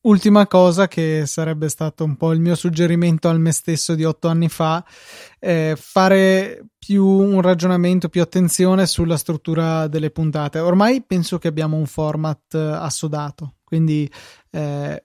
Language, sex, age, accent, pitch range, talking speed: Italian, male, 20-39, native, 155-175 Hz, 150 wpm